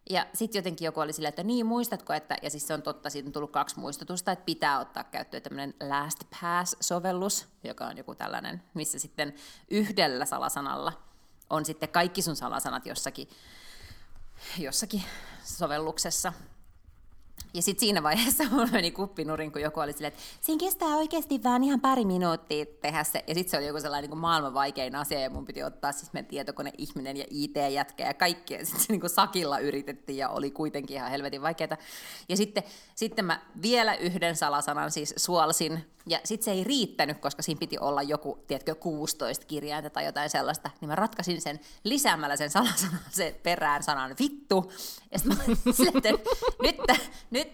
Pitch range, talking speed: 150-210 Hz, 170 wpm